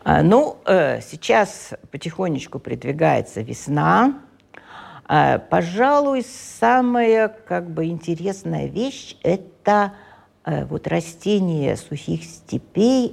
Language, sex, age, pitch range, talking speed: Russian, female, 50-69, 145-205 Hz, 70 wpm